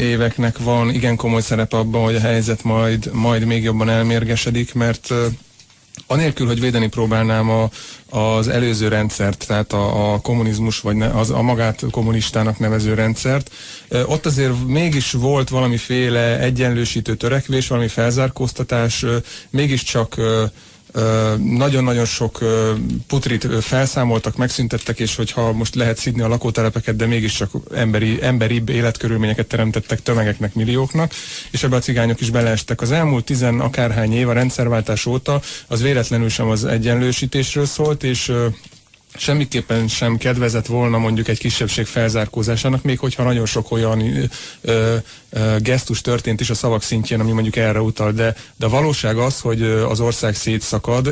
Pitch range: 110-125 Hz